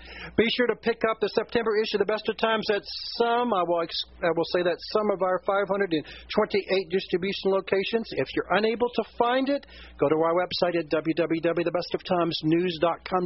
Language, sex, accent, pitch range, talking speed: English, male, American, 155-205 Hz, 165 wpm